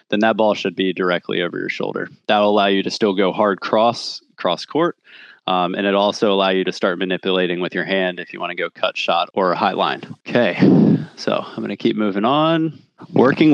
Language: English